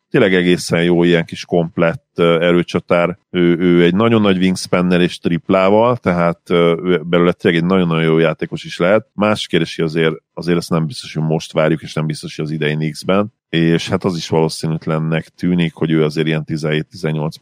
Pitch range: 80-95 Hz